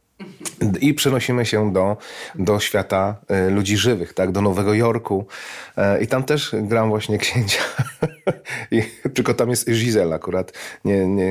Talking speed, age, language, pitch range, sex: 140 wpm, 30-49, Polish, 95-130 Hz, male